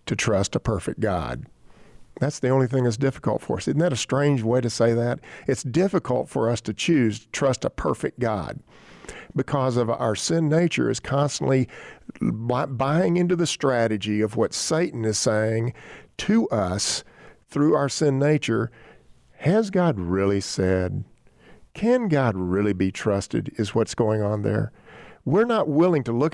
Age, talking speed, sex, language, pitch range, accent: 50-69, 165 wpm, male, English, 105-145 Hz, American